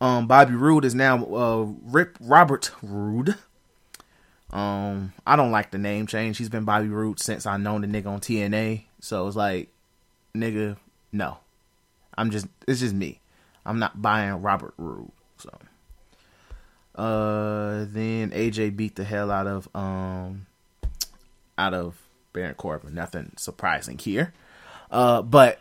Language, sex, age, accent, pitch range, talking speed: English, male, 20-39, American, 105-145 Hz, 145 wpm